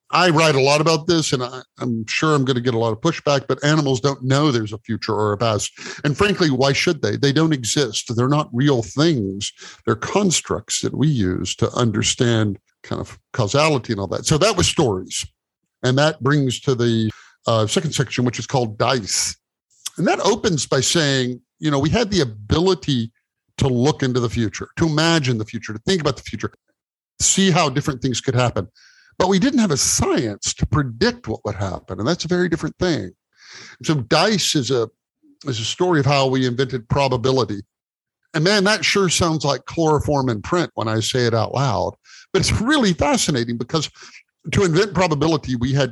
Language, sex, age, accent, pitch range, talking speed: English, male, 50-69, American, 115-155 Hz, 200 wpm